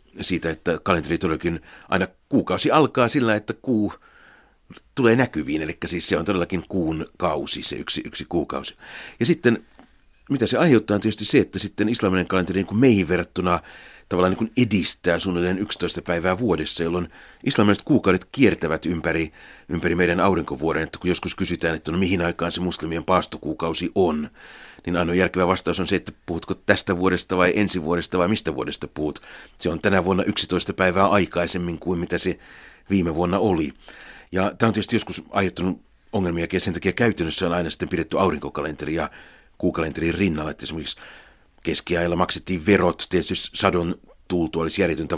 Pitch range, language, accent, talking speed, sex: 80-95 Hz, Finnish, native, 165 wpm, male